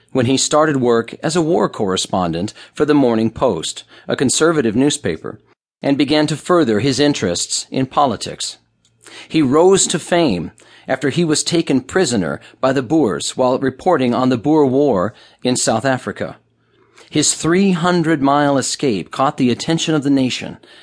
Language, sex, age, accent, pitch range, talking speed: English, male, 40-59, American, 115-155 Hz, 155 wpm